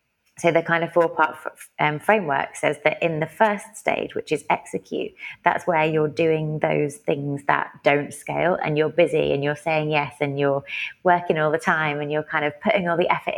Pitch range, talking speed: 140-160 Hz, 200 wpm